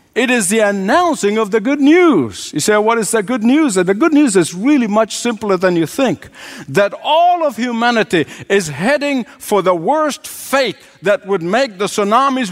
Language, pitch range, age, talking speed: English, 195-265 Hz, 60-79, 190 wpm